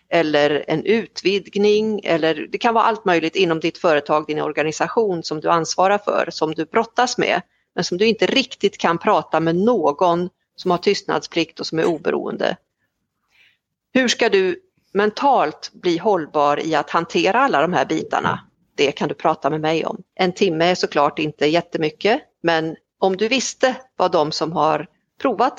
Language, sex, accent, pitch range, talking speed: Swedish, female, native, 160-225 Hz, 170 wpm